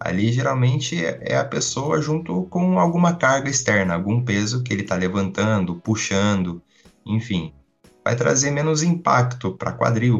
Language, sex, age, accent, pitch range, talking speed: Portuguese, male, 20-39, Brazilian, 95-125 Hz, 140 wpm